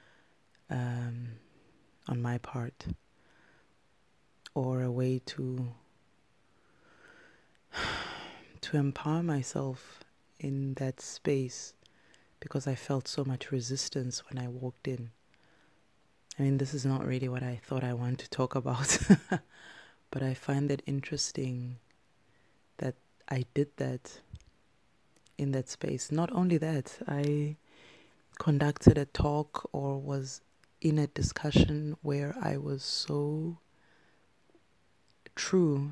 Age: 20-39